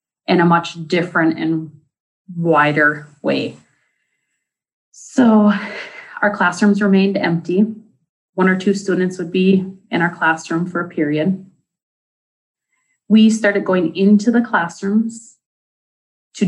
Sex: female